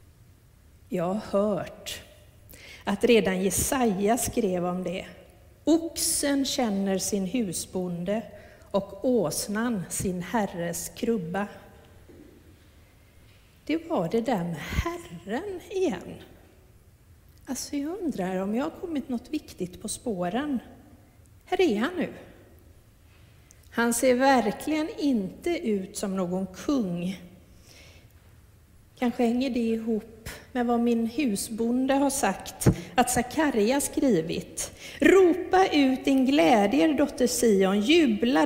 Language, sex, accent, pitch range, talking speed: Swedish, female, native, 165-260 Hz, 105 wpm